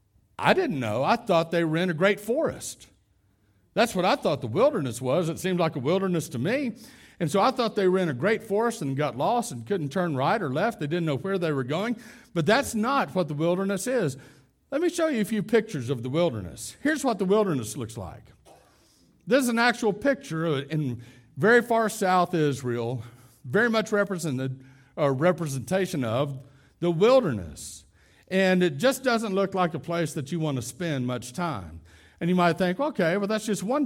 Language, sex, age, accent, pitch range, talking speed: English, male, 60-79, American, 140-215 Hz, 205 wpm